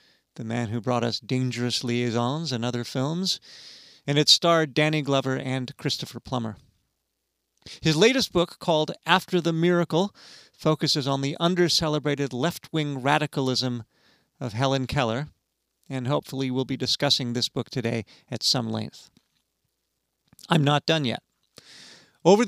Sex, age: male, 40-59